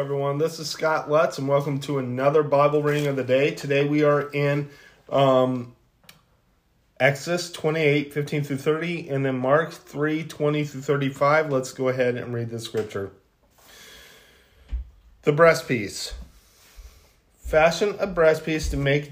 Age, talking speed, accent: 30-49, 150 wpm, American